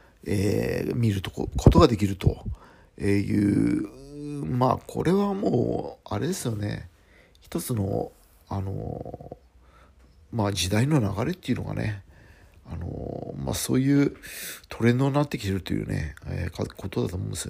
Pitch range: 100-135 Hz